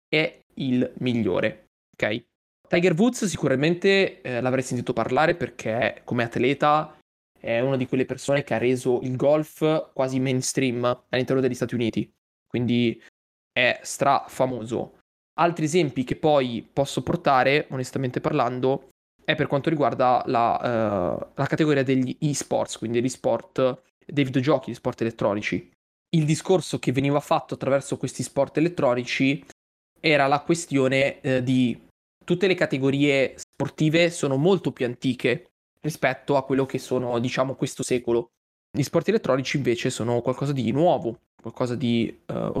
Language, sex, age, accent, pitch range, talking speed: Italian, male, 20-39, native, 125-155 Hz, 140 wpm